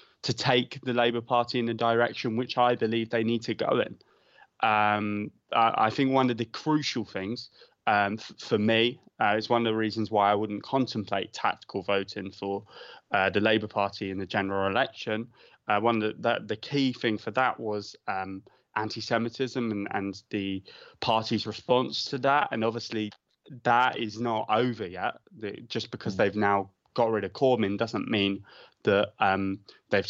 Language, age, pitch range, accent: English, 20-39, 100-120 Hz, British